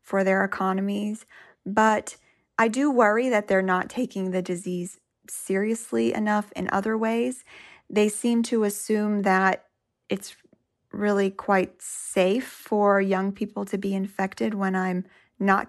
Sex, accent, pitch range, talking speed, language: female, American, 190-220 Hz, 140 wpm, English